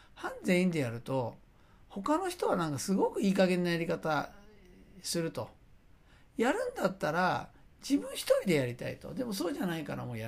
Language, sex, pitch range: Japanese, male, 115-195 Hz